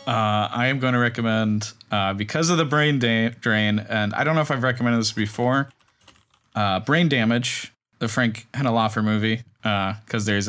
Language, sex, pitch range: English, male, 110-135 Hz